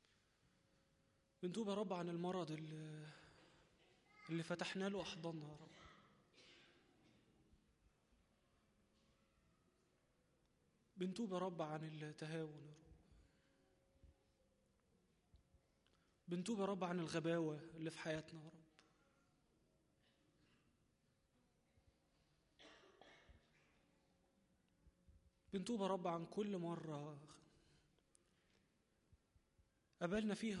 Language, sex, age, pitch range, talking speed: Arabic, male, 20-39, 155-180 Hz, 75 wpm